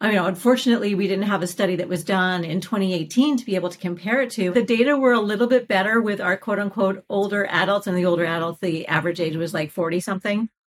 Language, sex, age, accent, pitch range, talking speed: English, female, 40-59, American, 180-230 Hz, 245 wpm